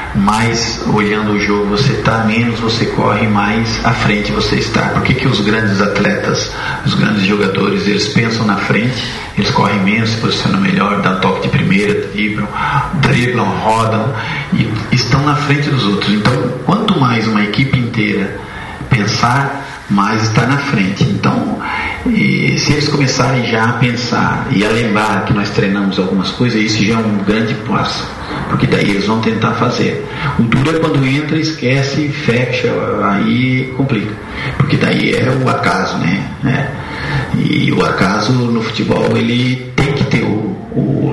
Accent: Brazilian